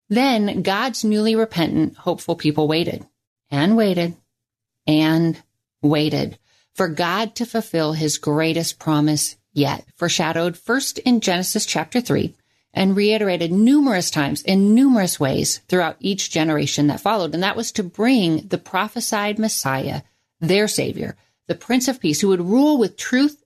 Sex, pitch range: female, 155-215 Hz